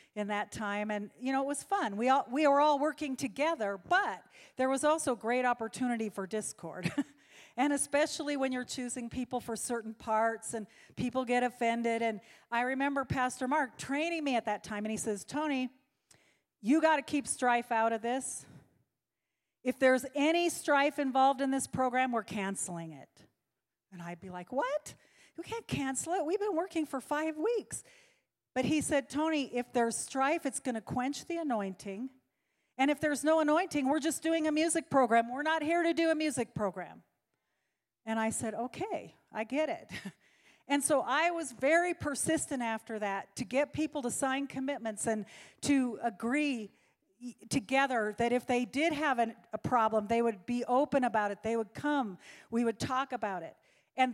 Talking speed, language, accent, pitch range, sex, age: 180 wpm, English, American, 225-295 Hz, female, 40-59